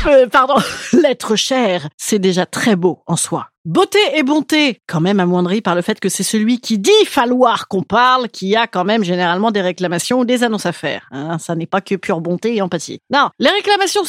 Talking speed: 215 wpm